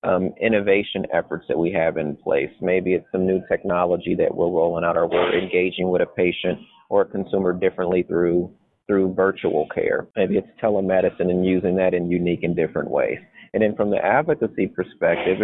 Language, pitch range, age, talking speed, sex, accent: English, 95-110 Hz, 30-49, 185 wpm, male, American